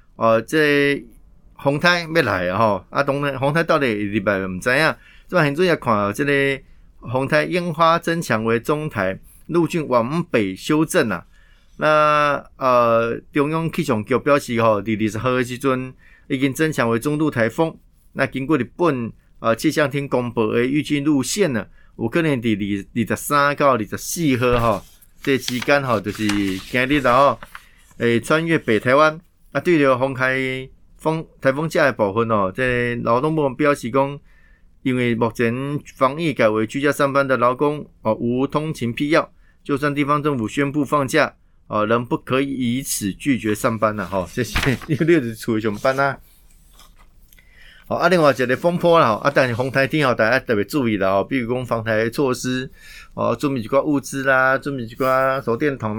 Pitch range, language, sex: 115-145 Hz, Chinese, male